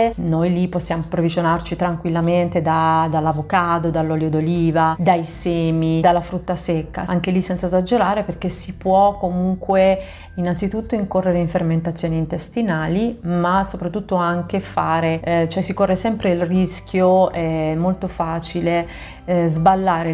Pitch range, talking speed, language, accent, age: 165-190 Hz, 125 wpm, Italian, native, 30-49